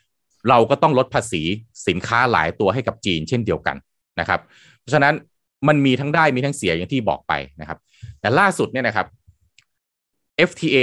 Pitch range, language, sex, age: 105-145 Hz, Thai, male, 20-39